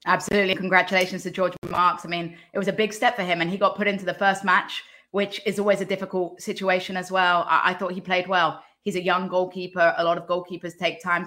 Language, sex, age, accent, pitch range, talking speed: English, female, 20-39, British, 170-190 Hz, 245 wpm